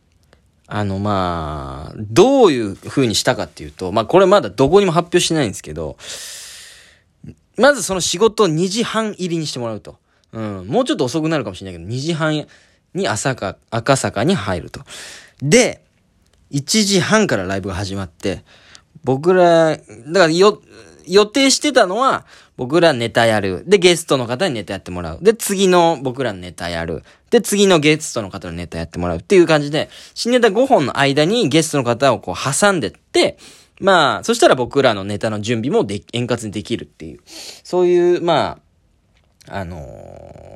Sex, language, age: male, Japanese, 20-39